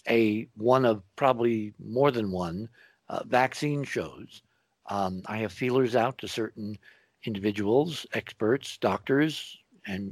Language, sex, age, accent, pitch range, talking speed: English, male, 60-79, American, 100-135 Hz, 125 wpm